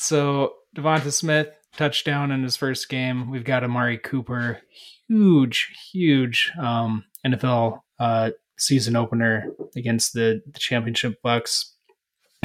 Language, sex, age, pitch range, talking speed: English, male, 20-39, 115-135 Hz, 115 wpm